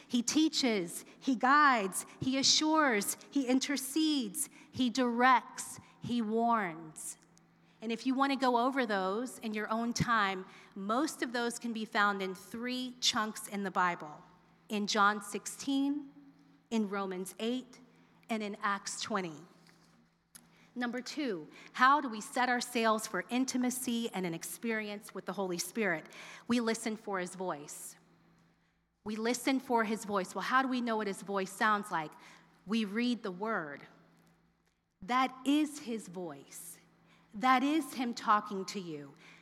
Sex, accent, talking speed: female, American, 145 wpm